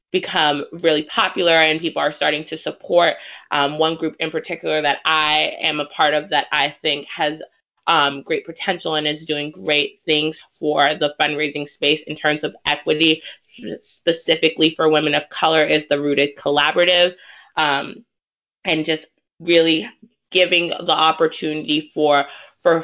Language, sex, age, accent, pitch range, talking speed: English, female, 20-39, American, 150-170 Hz, 150 wpm